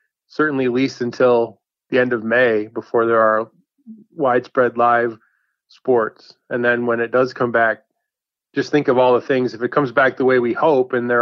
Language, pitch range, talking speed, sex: English, 115-130 Hz, 200 wpm, male